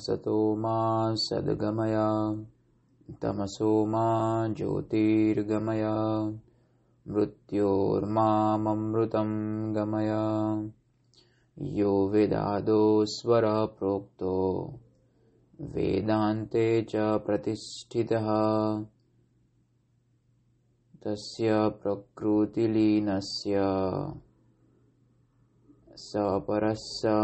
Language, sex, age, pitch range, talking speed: Hindi, male, 20-39, 105-110 Hz, 30 wpm